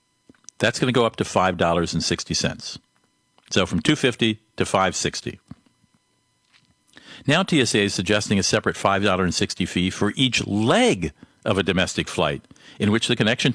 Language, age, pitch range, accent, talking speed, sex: English, 50-69, 95-125 Hz, American, 135 wpm, male